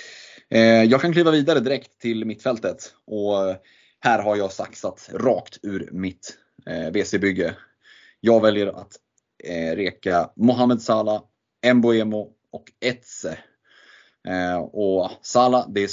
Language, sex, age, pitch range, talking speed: Swedish, male, 20-39, 95-110 Hz, 115 wpm